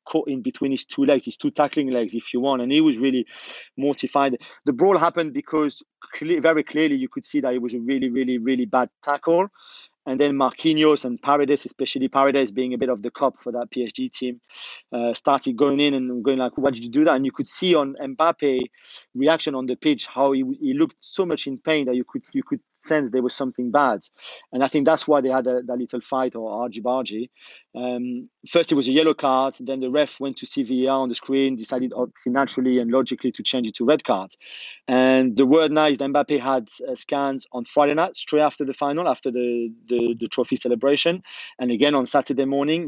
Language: English